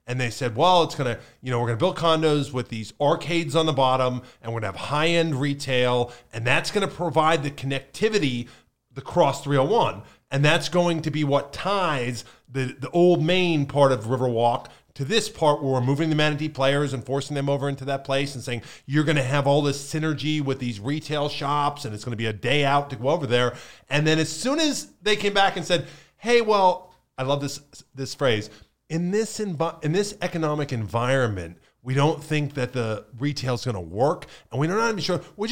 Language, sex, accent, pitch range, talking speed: English, male, American, 130-165 Hz, 210 wpm